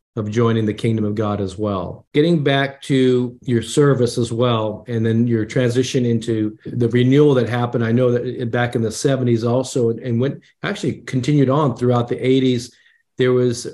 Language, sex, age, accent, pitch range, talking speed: English, male, 40-59, American, 120-135 Hz, 185 wpm